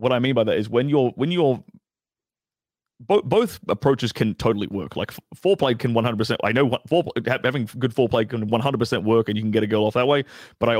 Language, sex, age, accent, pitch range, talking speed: English, male, 30-49, British, 110-135 Hz, 240 wpm